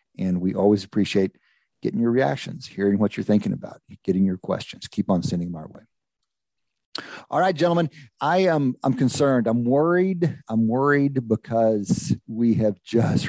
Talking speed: 165 wpm